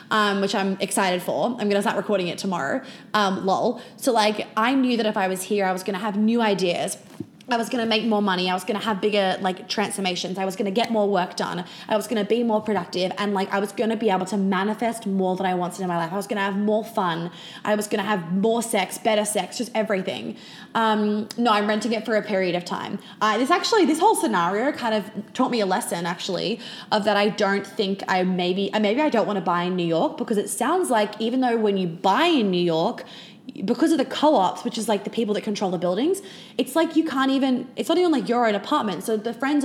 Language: English